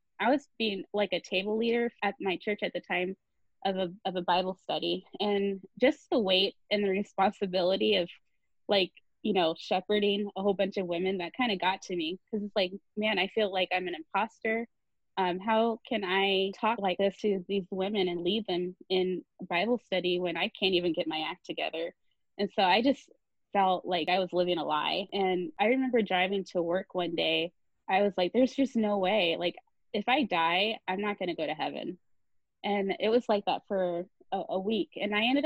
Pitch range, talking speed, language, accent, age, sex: 185-225 Hz, 210 wpm, English, American, 20-39, female